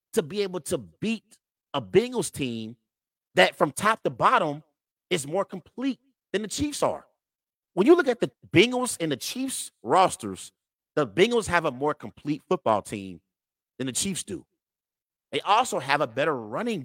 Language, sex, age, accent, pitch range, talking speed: English, male, 30-49, American, 140-230 Hz, 170 wpm